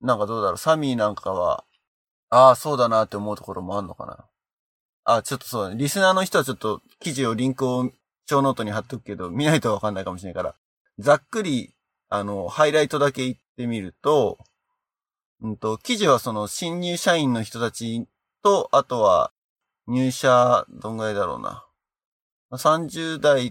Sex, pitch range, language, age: male, 110-150 Hz, Japanese, 20-39